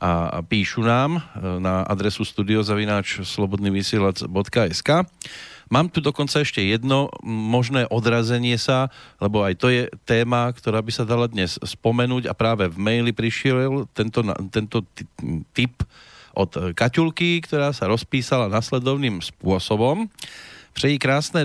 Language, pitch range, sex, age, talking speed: Slovak, 100-130 Hz, male, 40-59, 115 wpm